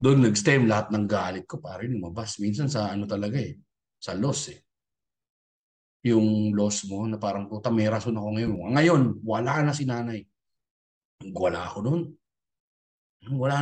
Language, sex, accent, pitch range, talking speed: Filipino, male, native, 110-155 Hz, 150 wpm